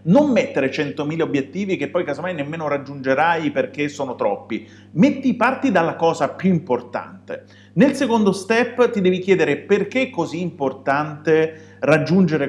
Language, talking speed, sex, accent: Italian, 140 wpm, male, native